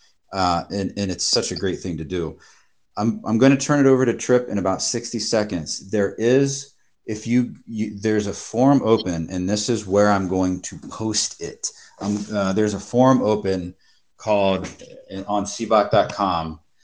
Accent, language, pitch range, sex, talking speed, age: American, English, 90-110 Hz, male, 180 wpm, 30-49